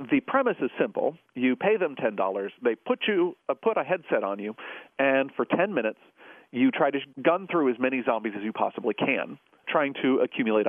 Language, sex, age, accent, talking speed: English, male, 40-59, American, 200 wpm